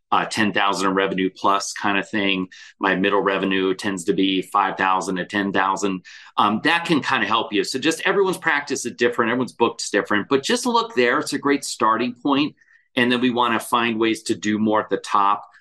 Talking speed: 210 wpm